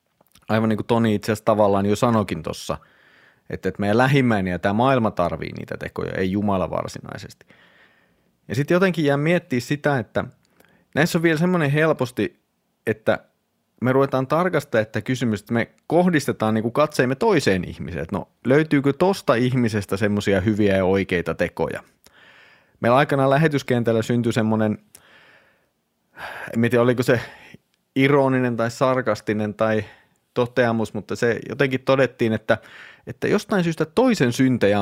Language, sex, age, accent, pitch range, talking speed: Finnish, male, 30-49, native, 110-140 Hz, 140 wpm